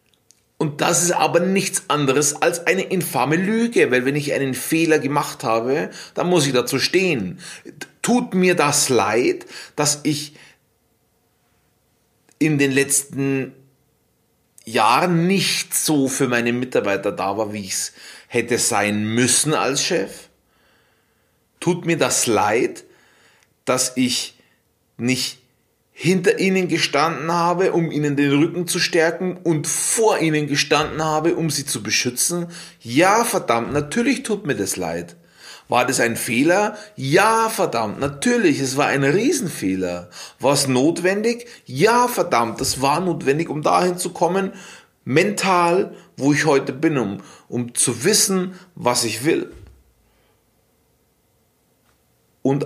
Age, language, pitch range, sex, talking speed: 30-49, German, 125-180 Hz, male, 130 wpm